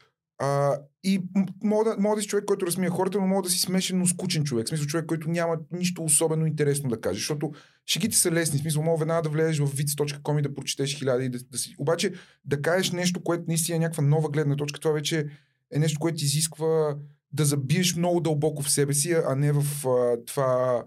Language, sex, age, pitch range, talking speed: Bulgarian, male, 30-49, 145-175 Hz, 225 wpm